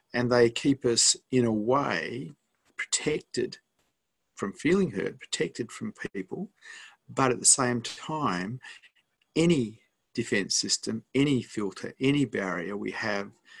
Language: English